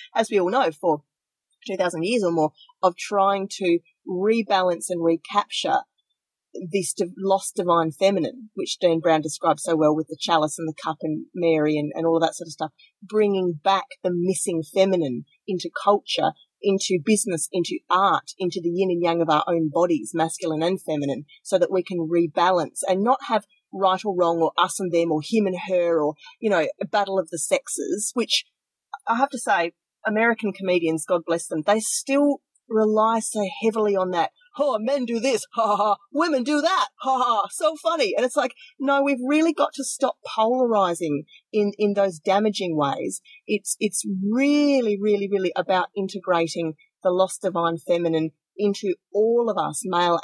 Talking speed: 185 wpm